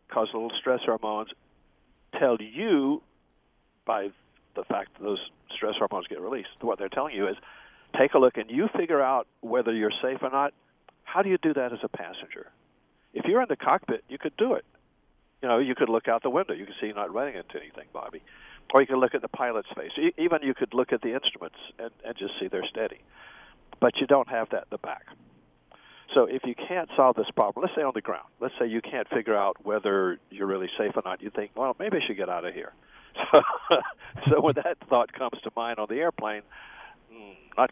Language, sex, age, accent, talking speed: English, male, 50-69, American, 225 wpm